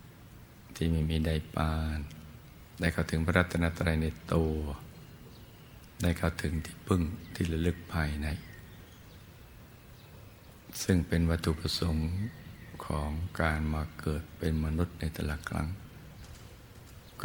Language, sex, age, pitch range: Thai, male, 60-79, 80-95 Hz